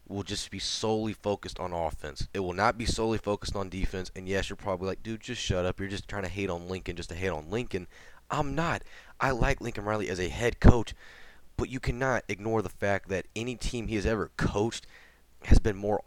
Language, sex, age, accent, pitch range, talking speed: English, male, 20-39, American, 90-110 Hz, 230 wpm